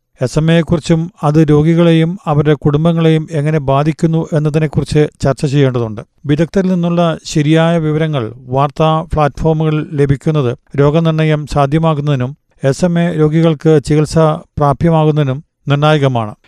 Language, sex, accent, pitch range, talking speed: Malayalam, male, native, 145-165 Hz, 100 wpm